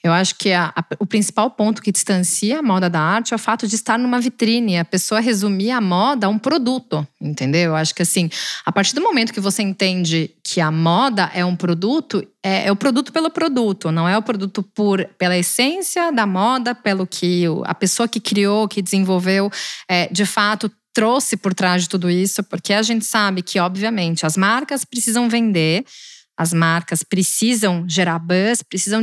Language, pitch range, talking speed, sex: Portuguese, 180-235 Hz, 190 wpm, female